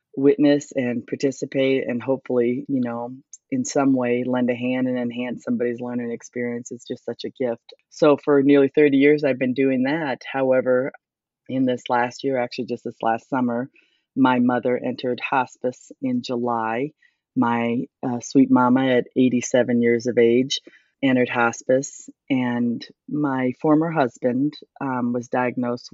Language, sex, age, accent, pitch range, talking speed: English, female, 30-49, American, 120-135 Hz, 155 wpm